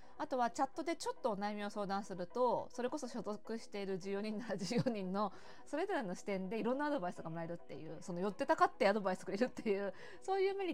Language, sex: Japanese, female